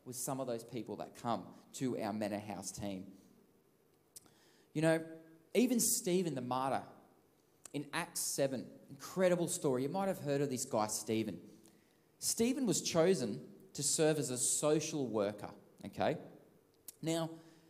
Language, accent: English, Australian